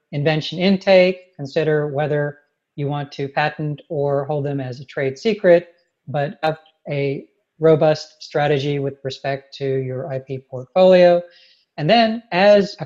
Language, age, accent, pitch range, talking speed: English, 40-59, American, 140-175 Hz, 140 wpm